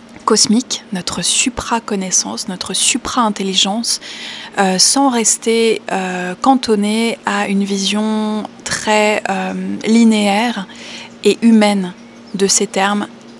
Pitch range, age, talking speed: 195-230 Hz, 20-39, 95 wpm